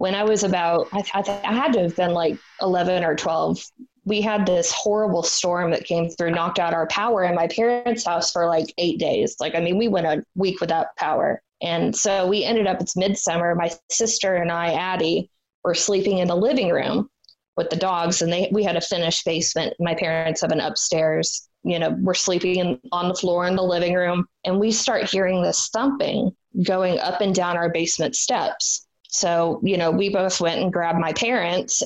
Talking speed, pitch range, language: 210 wpm, 170-200 Hz, English